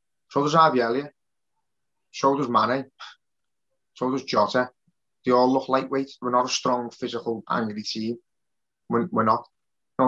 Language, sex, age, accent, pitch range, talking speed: English, male, 20-39, British, 120-140 Hz, 150 wpm